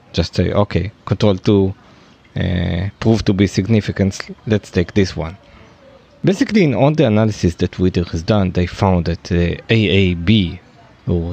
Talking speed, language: 160 wpm, English